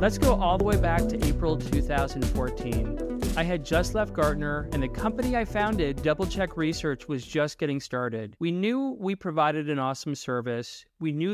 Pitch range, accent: 140-200 Hz, American